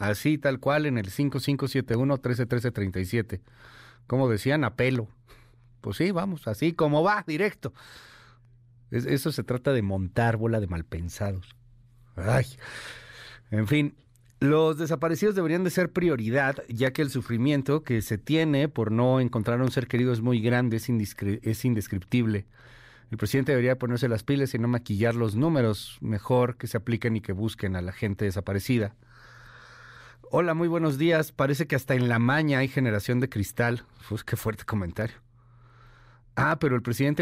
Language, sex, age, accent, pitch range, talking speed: Spanish, male, 40-59, Mexican, 110-135 Hz, 155 wpm